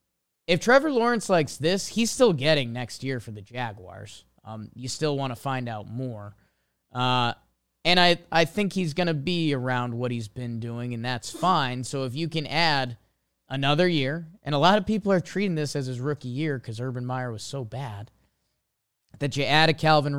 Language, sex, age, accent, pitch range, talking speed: English, male, 20-39, American, 125-160 Hz, 200 wpm